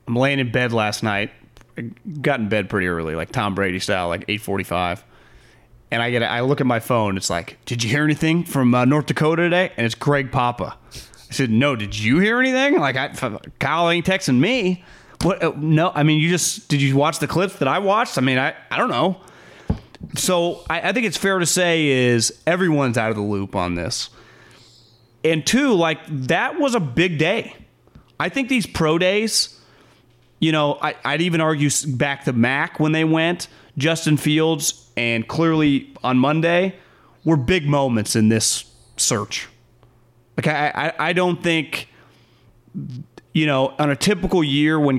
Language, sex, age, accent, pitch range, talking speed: English, male, 30-49, American, 115-160 Hz, 185 wpm